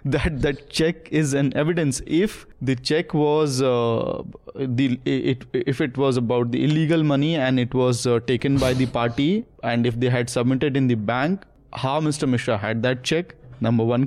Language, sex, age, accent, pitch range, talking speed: English, male, 20-39, Indian, 125-150 Hz, 190 wpm